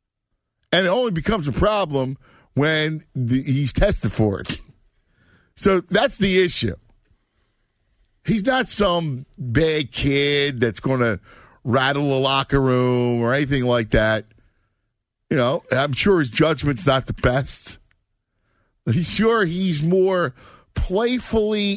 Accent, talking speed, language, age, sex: American, 125 wpm, English, 50-69, male